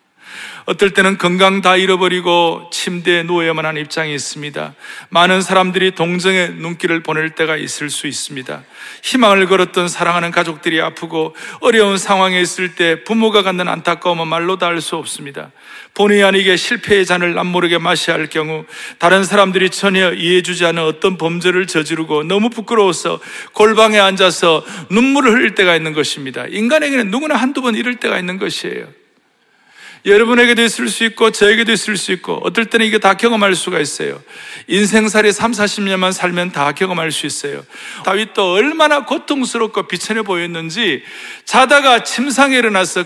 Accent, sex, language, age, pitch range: native, male, Korean, 40-59, 170-225 Hz